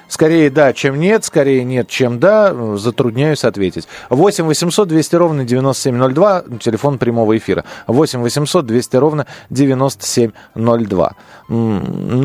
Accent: native